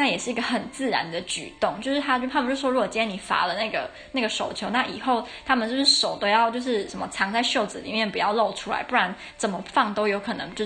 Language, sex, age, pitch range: Chinese, female, 10-29, 205-260 Hz